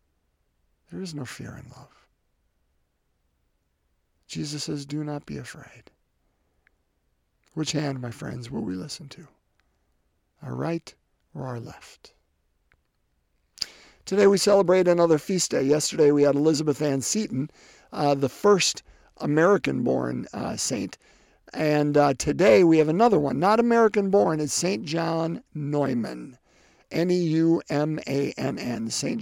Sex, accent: male, American